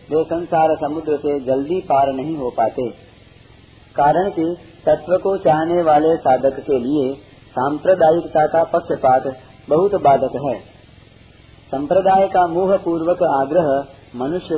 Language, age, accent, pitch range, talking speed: Hindi, 40-59, native, 125-165 Hz, 120 wpm